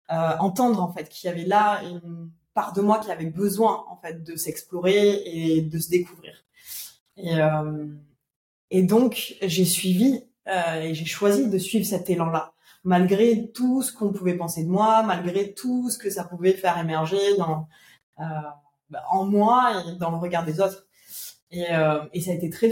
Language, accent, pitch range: French, French, 160-200 Hz